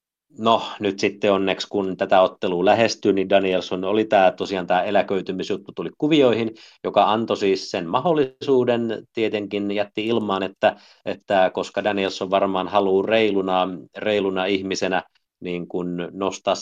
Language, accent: English, Finnish